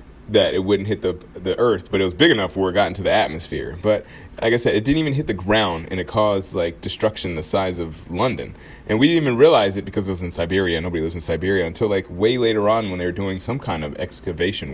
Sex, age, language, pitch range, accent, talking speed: male, 20-39, English, 90-115 Hz, American, 265 wpm